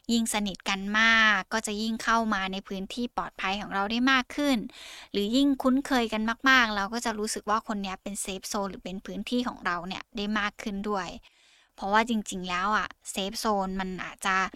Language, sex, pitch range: Thai, female, 195-235 Hz